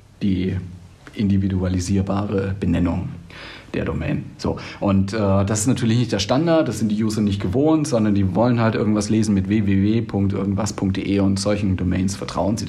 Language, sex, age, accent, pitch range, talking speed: German, male, 50-69, German, 100-125 Hz, 155 wpm